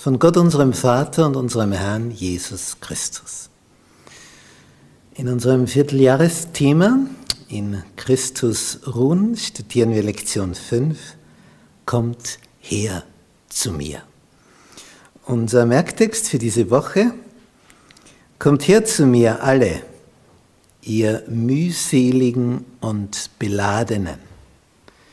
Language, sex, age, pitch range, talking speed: German, male, 60-79, 105-130 Hz, 90 wpm